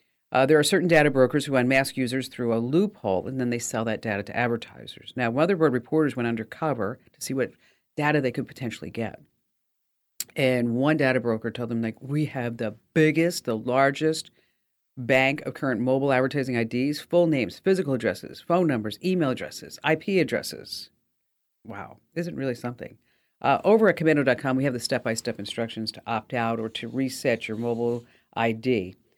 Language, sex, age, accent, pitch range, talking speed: English, female, 50-69, American, 120-160 Hz, 175 wpm